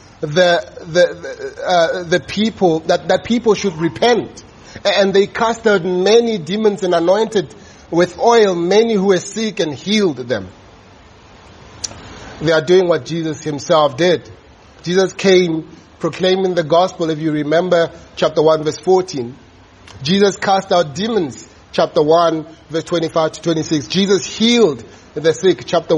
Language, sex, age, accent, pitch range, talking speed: English, male, 30-49, South African, 155-200 Hz, 140 wpm